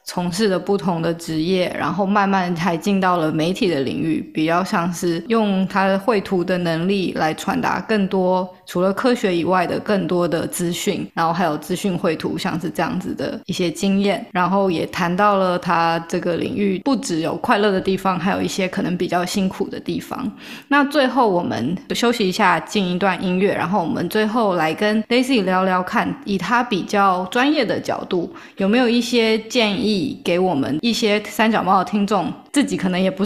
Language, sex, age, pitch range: Chinese, female, 20-39, 180-220 Hz